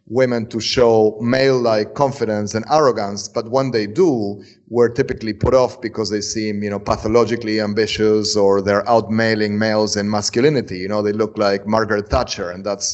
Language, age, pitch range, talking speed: English, 30-49, 105-120 Hz, 170 wpm